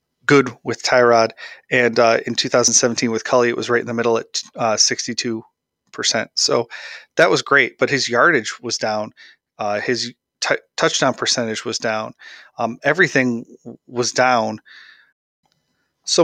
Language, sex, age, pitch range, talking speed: English, male, 30-49, 115-130 Hz, 145 wpm